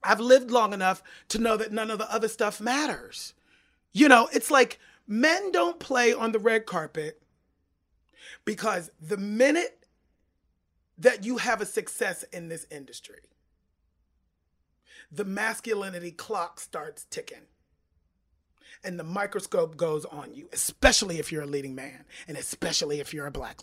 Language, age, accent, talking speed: English, 30-49, American, 145 wpm